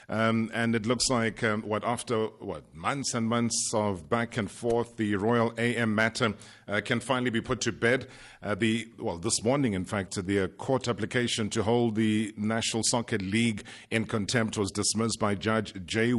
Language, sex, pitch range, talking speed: English, male, 105-120 Hz, 190 wpm